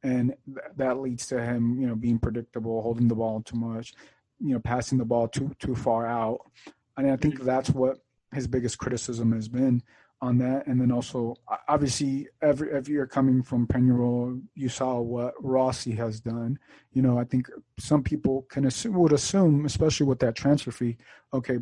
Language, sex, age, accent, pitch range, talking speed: English, male, 30-49, American, 120-140 Hz, 190 wpm